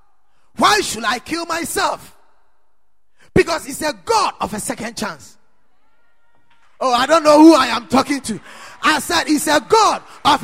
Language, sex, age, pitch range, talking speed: English, male, 30-49, 245-330 Hz, 160 wpm